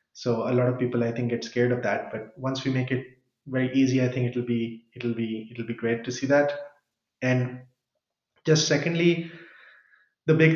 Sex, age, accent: male, 30-49, Indian